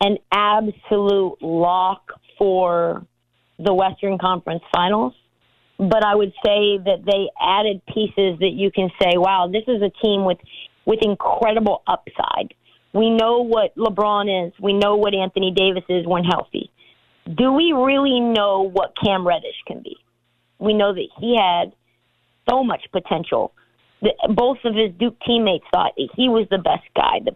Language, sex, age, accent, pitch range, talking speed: English, female, 40-59, American, 195-235 Hz, 155 wpm